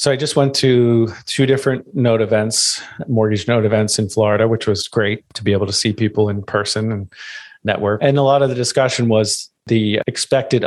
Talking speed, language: 200 wpm, English